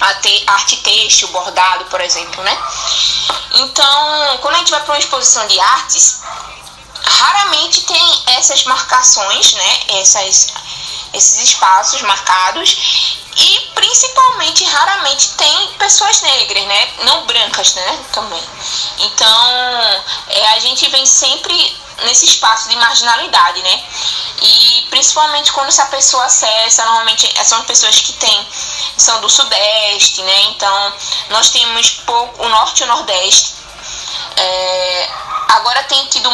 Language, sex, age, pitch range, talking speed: Portuguese, female, 10-29, 210-275 Hz, 125 wpm